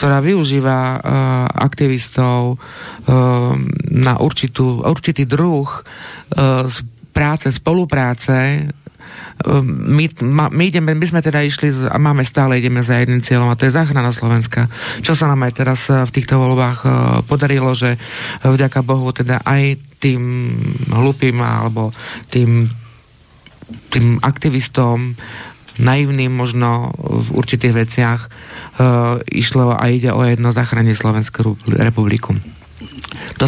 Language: Slovak